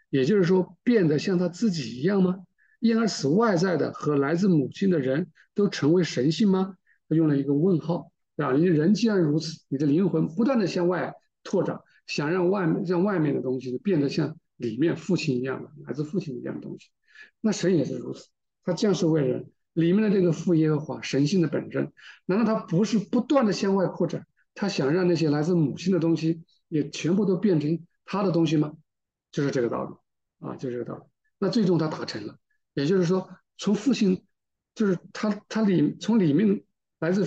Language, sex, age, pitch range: Chinese, male, 50-69, 150-195 Hz